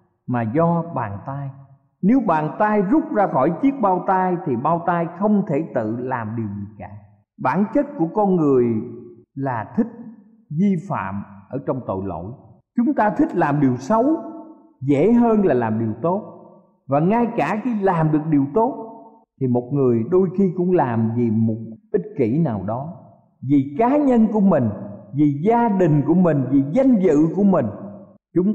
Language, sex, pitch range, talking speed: Vietnamese, male, 135-205 Hz, 180 wpm